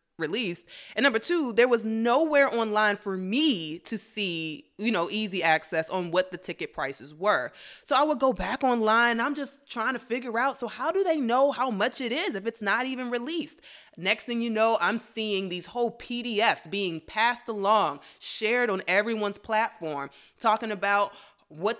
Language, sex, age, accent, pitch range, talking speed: English, female, 20-39, American, 185-250 Hz, 185 wpm